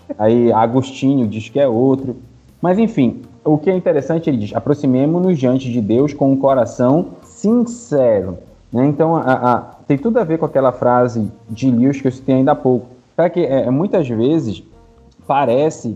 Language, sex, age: Portuguese, male, 20-39